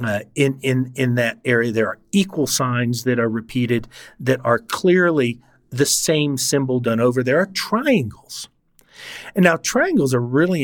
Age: 50-69